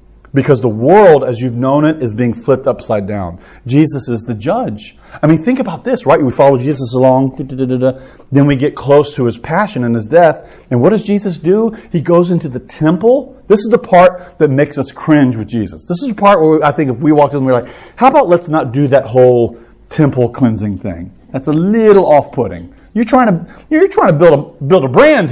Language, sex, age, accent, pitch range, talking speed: English, male, 40-59, American, 120-170 Hz, 240 wpm